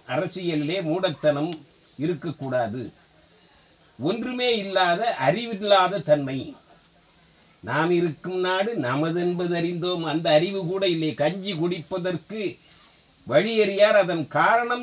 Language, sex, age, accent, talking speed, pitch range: Tamil, male, 50-69, native, 90 wpm, 140-195 Hz